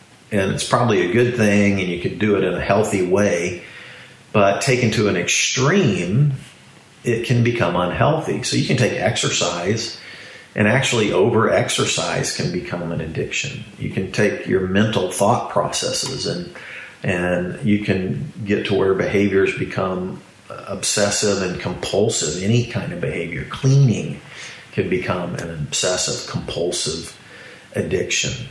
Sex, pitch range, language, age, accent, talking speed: male, 95-120 Hz, English, 40-59, American, 140 wpm